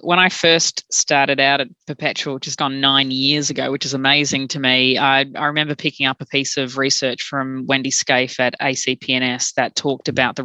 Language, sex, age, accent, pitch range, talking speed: English, female, 20-39, Australian, 130-150 Hz, 200 wpm